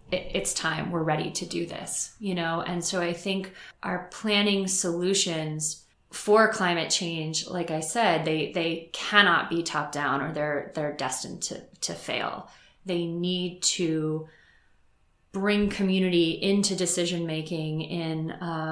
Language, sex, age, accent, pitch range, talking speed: English, female, 20-39, American, 165-185 Hz, 140 wpm